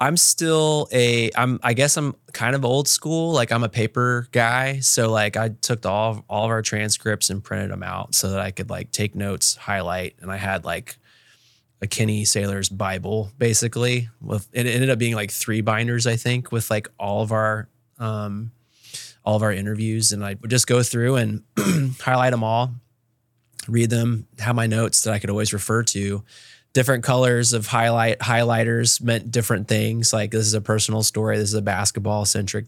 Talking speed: 200 wpm